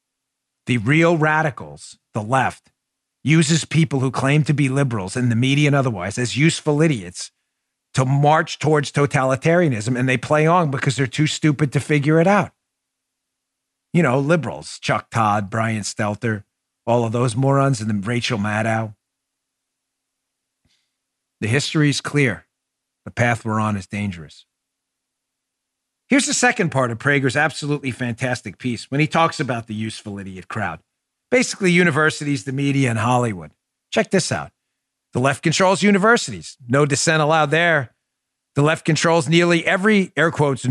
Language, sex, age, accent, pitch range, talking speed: English, male, 50-69, American, 125-165 Hz, 150 wpm